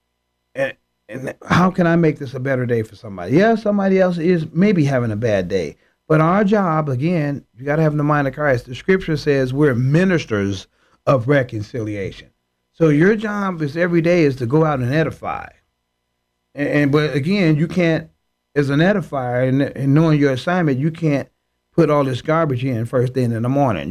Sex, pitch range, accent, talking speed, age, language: male, 130-165 Hz, American, 195 wpm, 40-59, English